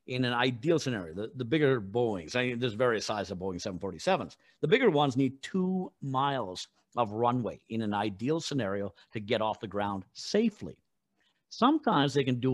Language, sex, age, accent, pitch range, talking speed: English, male, 50-69, American, 125-185 Hz, 180 wpm